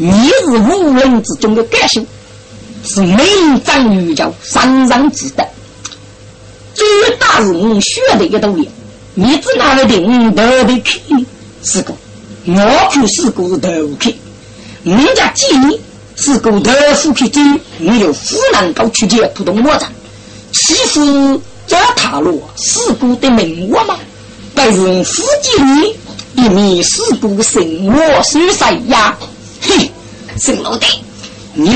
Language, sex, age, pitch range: Chinese, female, 50-69, 220-300 Hz